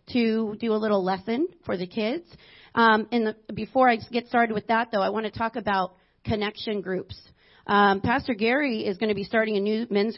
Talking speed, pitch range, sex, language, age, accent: 210 wpm, 200-240 Hz, female, English, 30-49, American